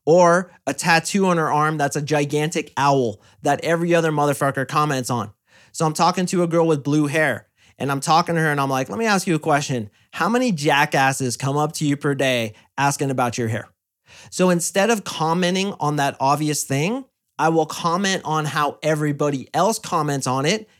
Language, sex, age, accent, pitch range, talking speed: English, male, 30-49, American, 135-165 Hz, 200 wpm